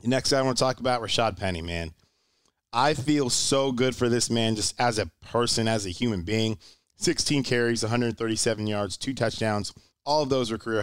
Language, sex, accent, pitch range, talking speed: English, male, American, 100-115 Hz, 200 wpm